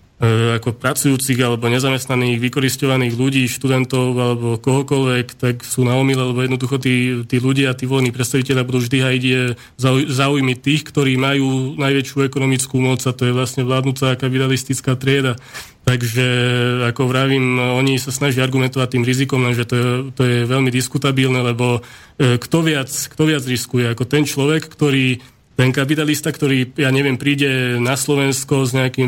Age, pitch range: 20-39, 125-140 Hz